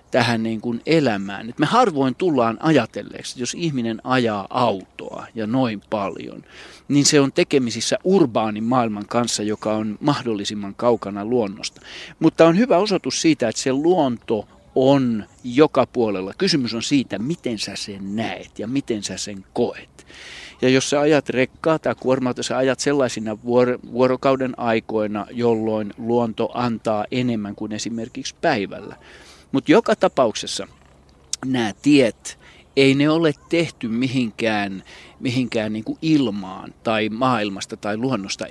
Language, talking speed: Finnish, 135 wpm